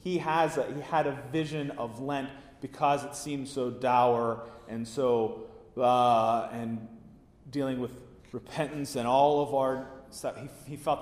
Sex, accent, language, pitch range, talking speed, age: male, American, English, 90-140 Hz, 160 wpm, 30-49